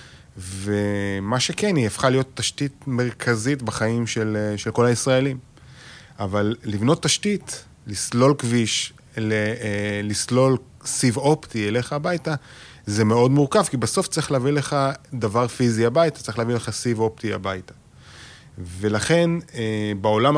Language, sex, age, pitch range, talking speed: Hebrew, male, 30-49, 105-130 Hz, 120 wpm